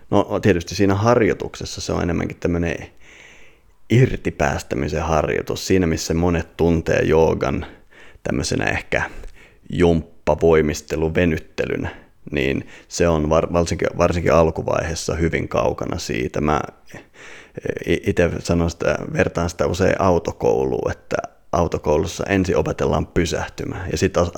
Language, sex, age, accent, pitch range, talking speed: Finnish, male, 30-49, native, 85-100 Hz, 105 wpm